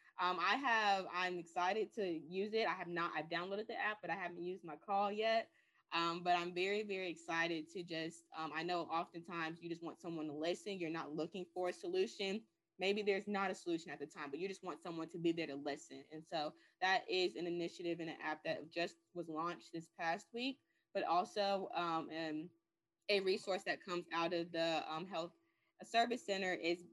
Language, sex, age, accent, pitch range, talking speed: English, female, 20-39, American, 165-200 Hz, 210 wpm